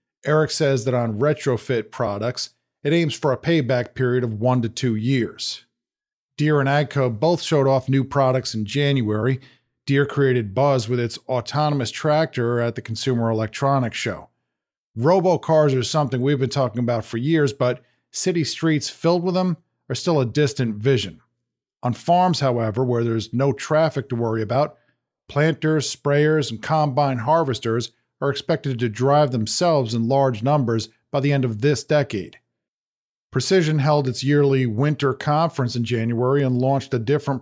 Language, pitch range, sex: English, 120-150 Hz, male